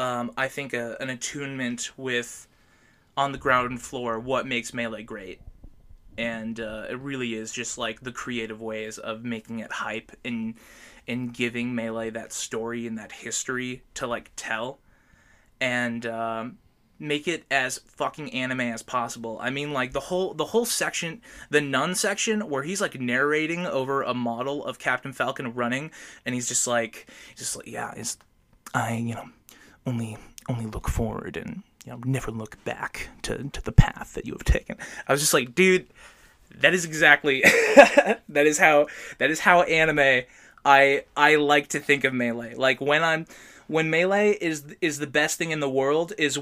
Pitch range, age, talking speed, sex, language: 120-145 Hz, 20-39, 175 wpm, male, English